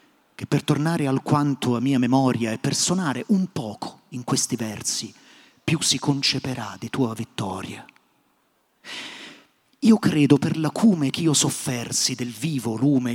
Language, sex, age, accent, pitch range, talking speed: Italian, male, 40-59, native, 130-195 Hz, 140 wpm